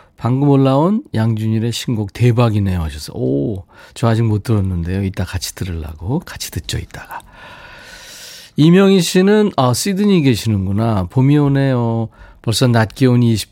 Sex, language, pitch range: male, Korean, 95-140 Hz